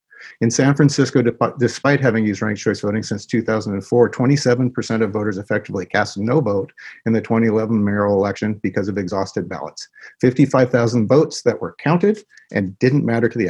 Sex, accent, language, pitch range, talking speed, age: male, American, English, 110-130 Hz, 165 wpm, 50-69